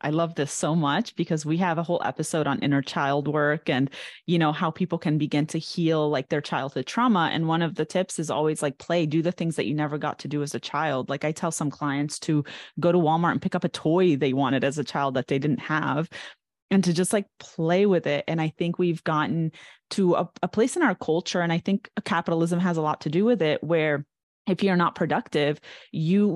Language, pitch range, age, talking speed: English, 155-185 Hz, 30-49, 245 wpm